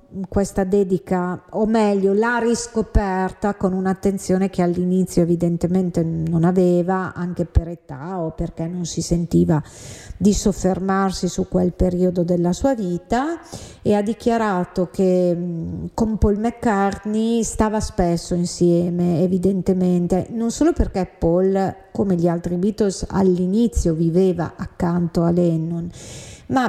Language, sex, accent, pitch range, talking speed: Italian, female, native, 175-195 Hz, 120 wpm